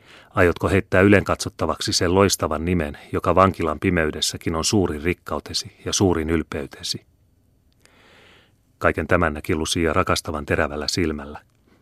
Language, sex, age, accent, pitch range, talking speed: Finnish, male, 30-49, native, 80-95 Hz, 115 wpm